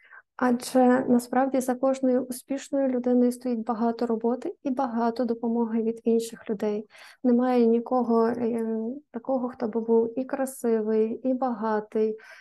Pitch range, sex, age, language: 230-255 Hz, female, 20-39, Ukrainian